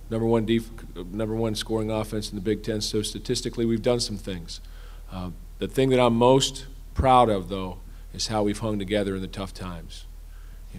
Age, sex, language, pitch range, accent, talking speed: 40-59, male, English, 90-110 Hz, American, 200 wpm